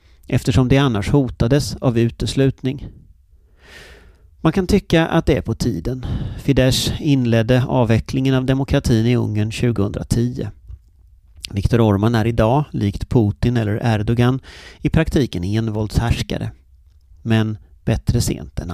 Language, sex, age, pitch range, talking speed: Swedish, male, 40-59, 90-130 Hz, 120 wpm